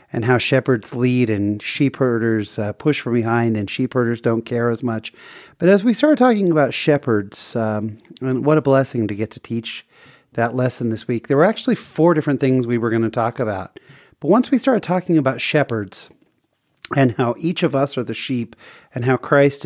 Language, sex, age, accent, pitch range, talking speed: English, male, 40-59, American, 115-150 Hz, 200 wpm